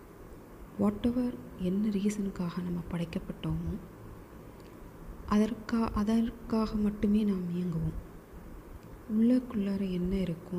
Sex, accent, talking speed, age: female, native, 80 wpm, 30-49